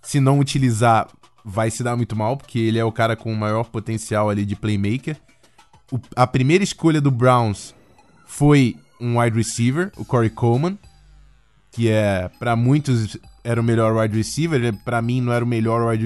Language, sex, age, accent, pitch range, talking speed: Portuguese, male, 20-39, Brazilian, 115-145 Hz, 185 wpm